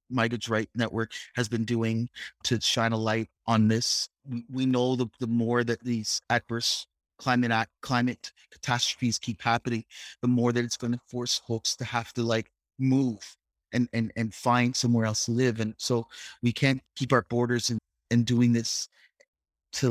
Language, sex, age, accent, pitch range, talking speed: English, male, 30-49, American, 115-125 Hz, 180 wpm